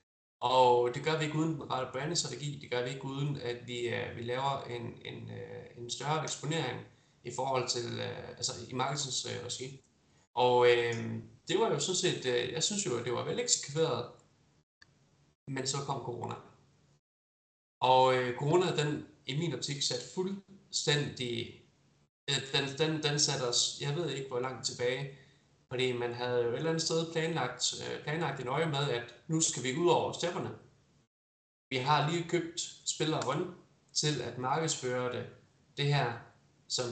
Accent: native